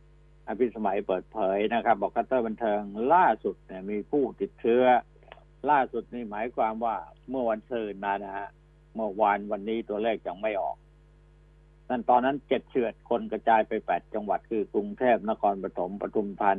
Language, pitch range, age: Thai, 110-155 Hz, 60-79